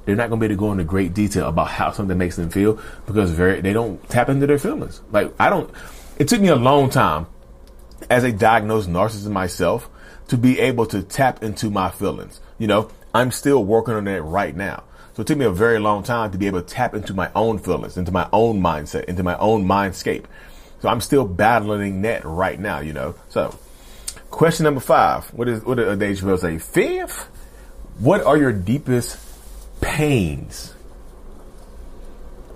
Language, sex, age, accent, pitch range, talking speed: English, male, 30-49, American, 90-125 Hz, 195 wpm